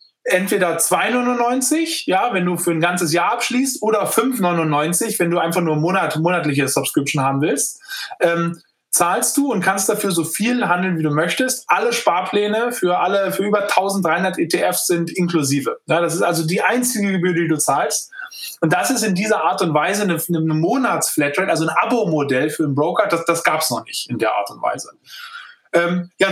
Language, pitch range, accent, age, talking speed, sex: German, 160-215 Hz, German, 20-39, 190 wpm, male